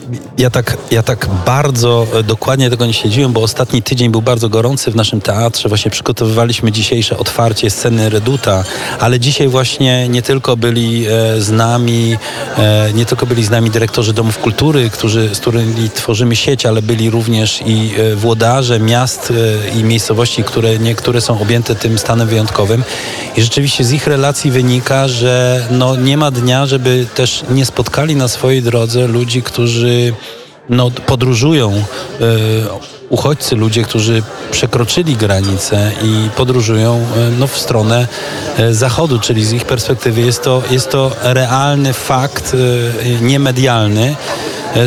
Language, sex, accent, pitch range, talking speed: Polish, male, native, 115-130 Hz, 145 wpm